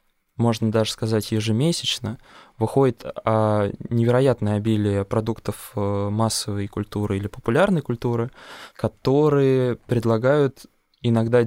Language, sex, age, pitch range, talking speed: Russian, male, 20-39, 110-130 Hz, 85 wpm